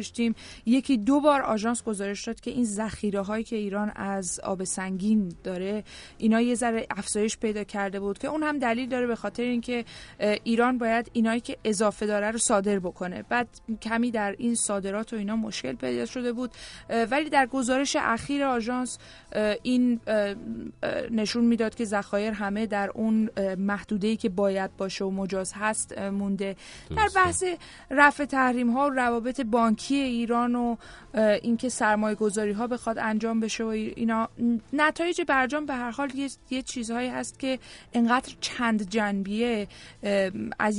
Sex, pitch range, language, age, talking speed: female, 200-240 Hz, English, 20-39, 150 wpm